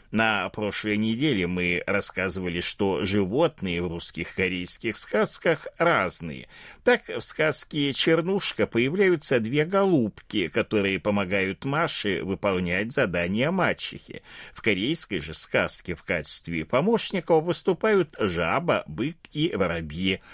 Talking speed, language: 110 wpm, Russian